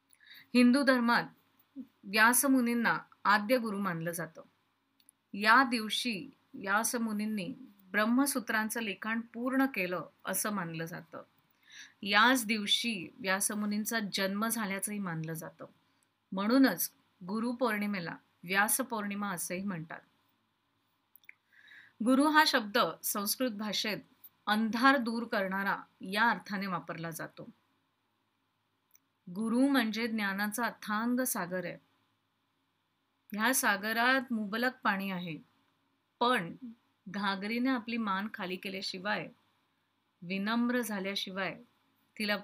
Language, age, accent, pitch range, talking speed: Marathi, 30-49, native, 190-235 Hz, 90 wpm